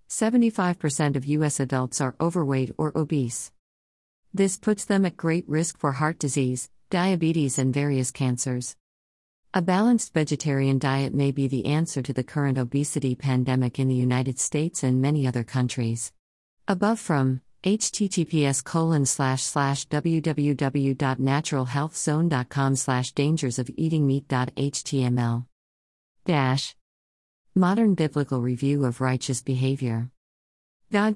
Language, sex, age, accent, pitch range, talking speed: English, female, 50-69, American, 130-155 Hz, 125 wpm